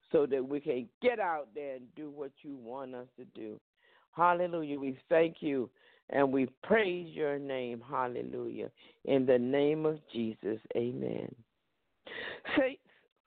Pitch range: 140-185 Hz